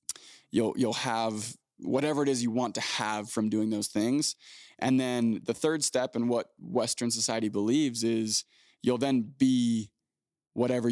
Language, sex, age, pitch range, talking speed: English, male, 20-39, 115-130 Hz, 160 wpm